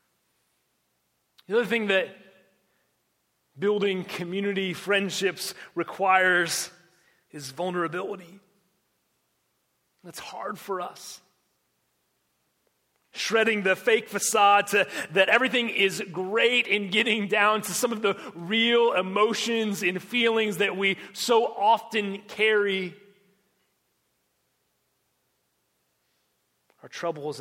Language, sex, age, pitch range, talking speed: English, male, 30-49, 195-240 Hz, 90 wpm